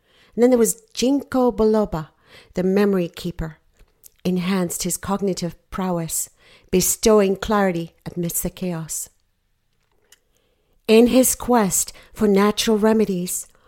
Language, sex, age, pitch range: English, female, 50-69, 180-215 Hz